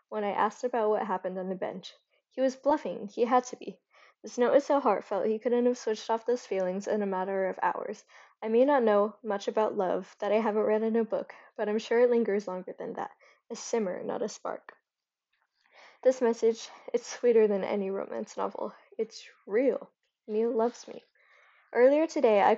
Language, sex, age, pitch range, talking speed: English, female, 10-29, 210-250 Hz, 200 wpm